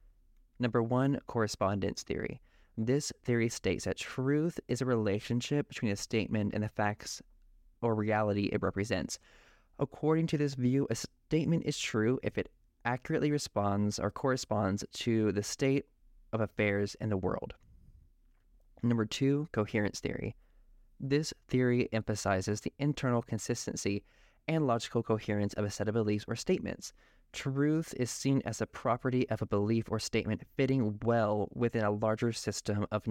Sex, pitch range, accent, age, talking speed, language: male, 100-125 Hz, American, 20-39, 150 wpm, English